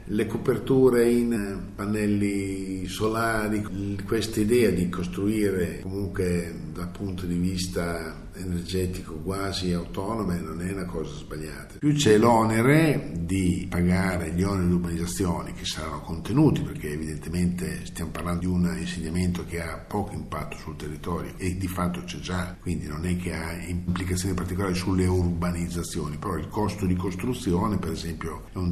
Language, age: Italian, 50-69